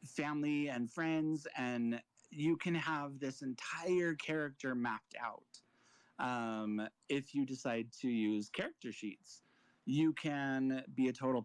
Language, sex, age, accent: English, male, 30-49, American